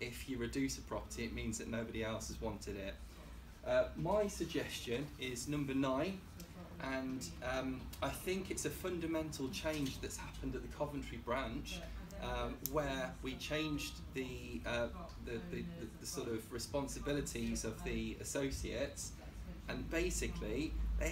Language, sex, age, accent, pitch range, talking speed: English, male, 20-39, British, 105-135 Hz, 150 wpm